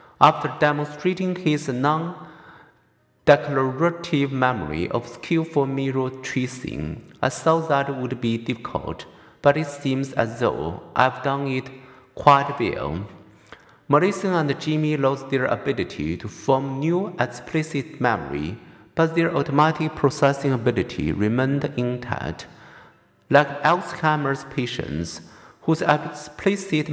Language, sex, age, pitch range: Chinese, male, 50-69, 120-155 Hz